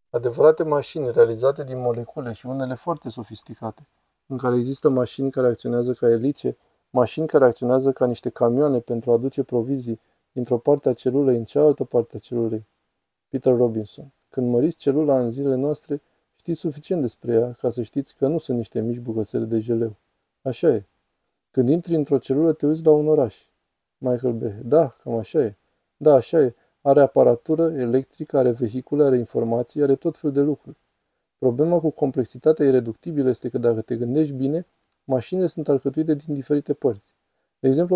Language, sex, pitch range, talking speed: Romanian, male, 120-150 Hz, 170 wpm